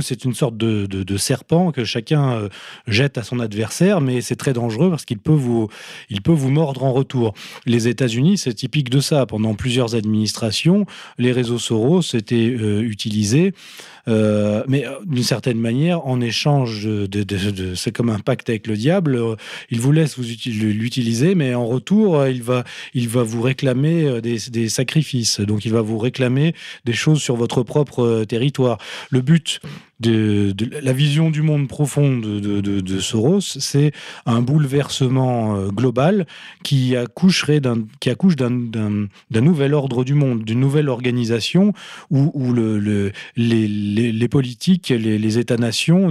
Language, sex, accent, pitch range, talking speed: French, male, French, 115-145 Hz, 180 wpm